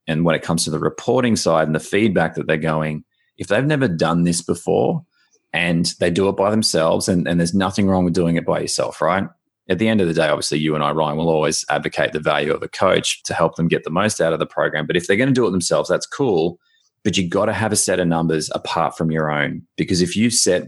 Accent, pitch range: Australian, 80-95 Hz